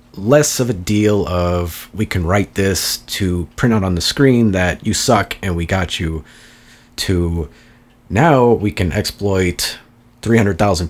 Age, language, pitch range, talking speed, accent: 30-49, English, 85-105 Hz, 155 wpm, American